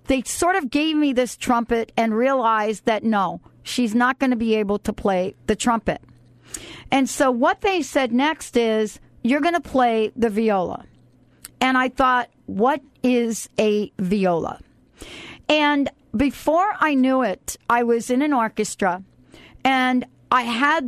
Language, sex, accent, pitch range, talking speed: English, female, American, 220-270 Hz, 155 wpm